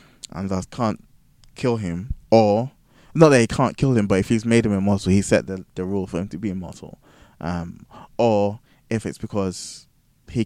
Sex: male